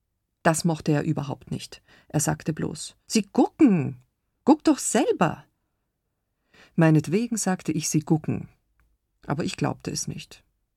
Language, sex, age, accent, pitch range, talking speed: German, female, 50-69, German, 150-200 Hz, 130 wpm